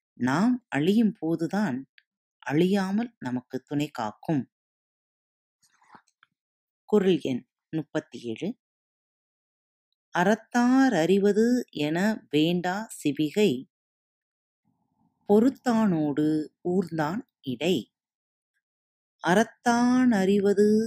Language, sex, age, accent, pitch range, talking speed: Tamil, female, 30-49, native, 155-215 Hz, 60 wpm